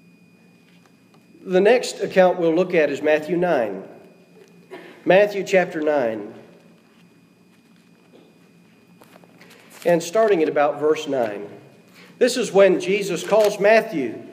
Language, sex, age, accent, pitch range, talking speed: English, male, 40-59, American, 165-225 Hz, 100 wpm